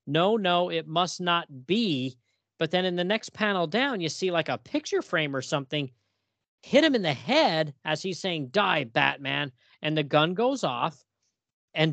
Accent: American